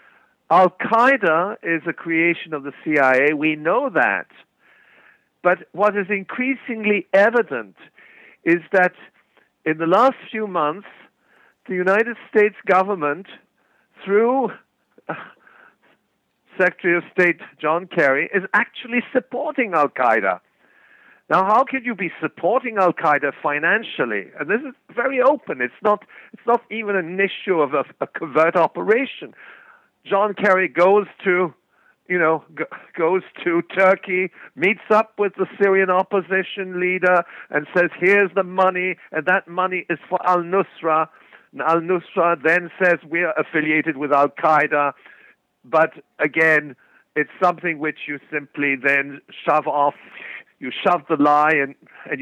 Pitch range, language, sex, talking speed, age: 155-200 Hz, English, male, 130 wpm, 50-69